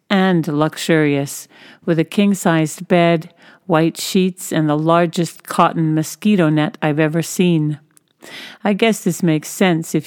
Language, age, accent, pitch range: English, 50-69, American, 155-180 Hz